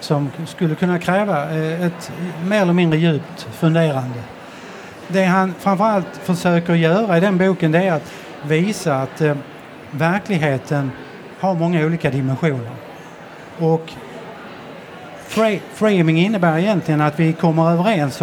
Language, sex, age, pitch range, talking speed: Swedish, male, 60-79, 155-185 Hz, 115 wpm